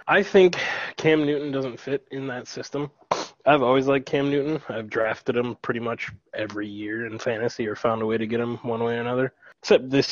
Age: 20-39